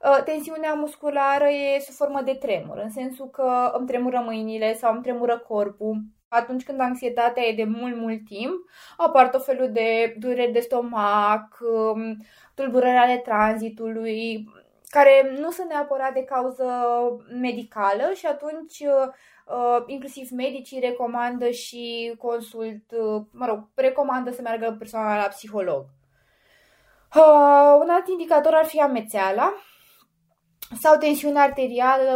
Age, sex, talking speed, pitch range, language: 20-39, female, 125 wpm, 225-270 Hz, Romanian